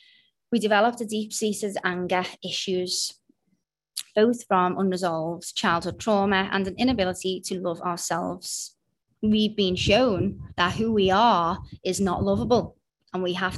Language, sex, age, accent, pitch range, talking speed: English, female, 20-39, British, 175-200 Hz, 135 wpm